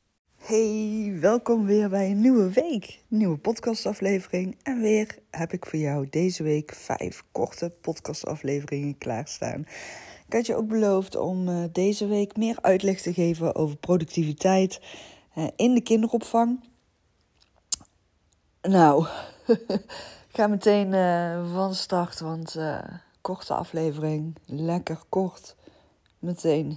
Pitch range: 145-205 Hz